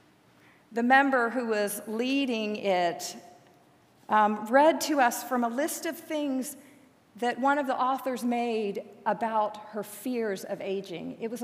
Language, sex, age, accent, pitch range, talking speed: English, female, 40-59, American, 190-240 Hz, 145 wpm